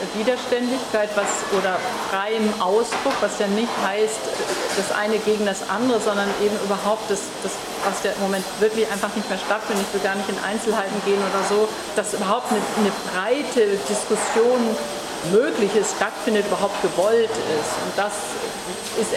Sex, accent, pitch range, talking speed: female, German, 200-230 Hz, 160 wpm